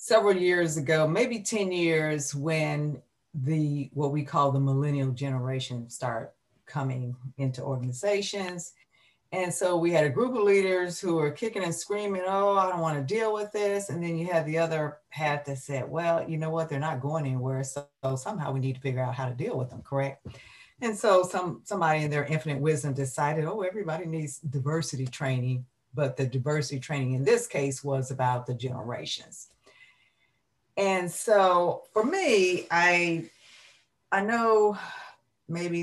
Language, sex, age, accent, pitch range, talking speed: English, female, 40-59, American, 135-170 Hz, 170 wpm